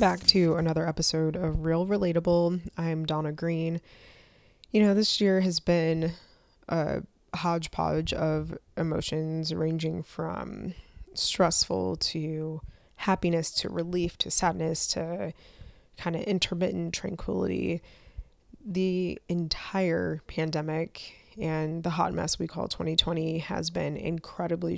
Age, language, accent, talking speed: 20-39, English, American, 115 wpm